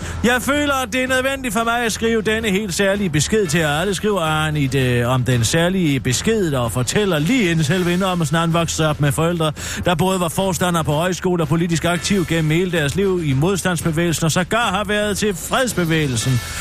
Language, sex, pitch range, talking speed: Danish, male, 145-200 Hz, 200 wpm